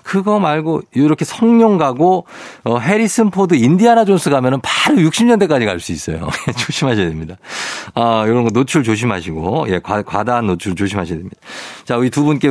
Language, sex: Korean, male